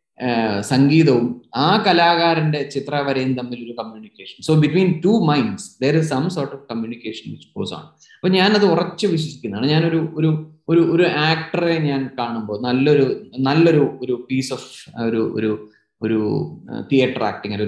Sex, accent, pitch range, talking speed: male, native, 125-165 Hz, 120 wpm